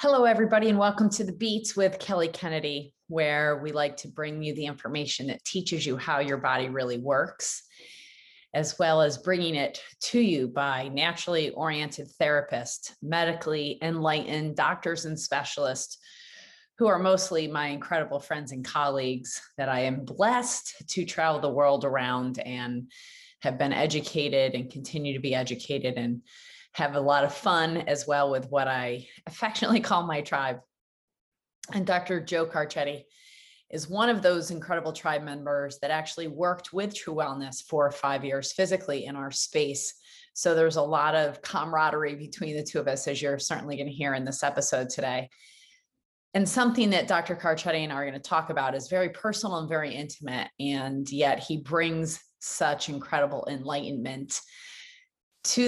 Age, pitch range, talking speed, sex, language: 30-49, 140-175 Hz, 165 wpm, female, English